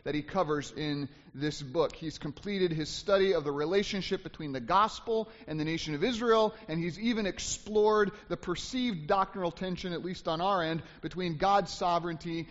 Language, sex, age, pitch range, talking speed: English, male, 30-49, 150-195 Hz, 175 wpm